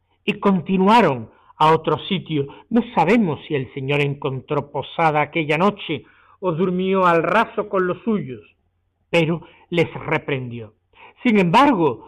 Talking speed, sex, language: 125 wpm, male, Spanish